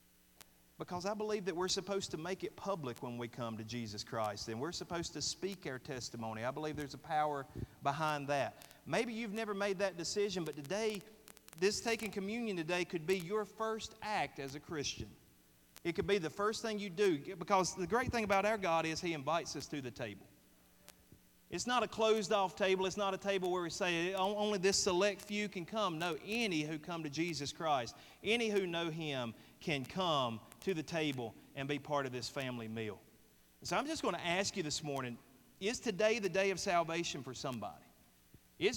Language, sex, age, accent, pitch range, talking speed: English, male, 40-59, American, 135-195 Hz, 205 wpm